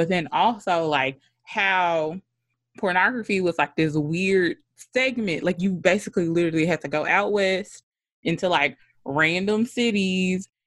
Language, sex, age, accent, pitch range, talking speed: English, female, 20-39, American, 165-230 Hz, 135 wpm